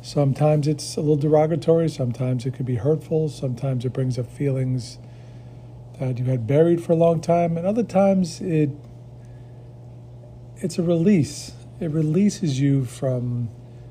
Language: English